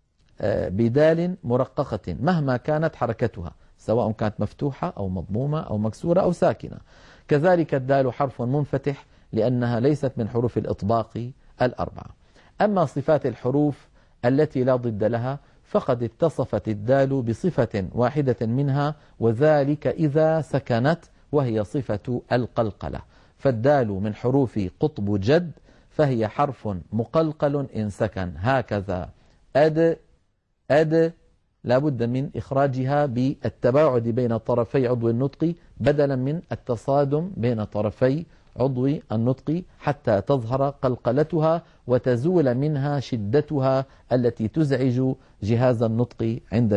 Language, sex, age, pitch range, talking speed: Arabic, male, 50-69, 110-145 Hz, 105 wpm